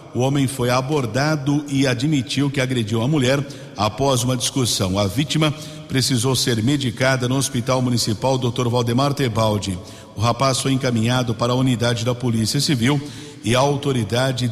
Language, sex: Portuguese, male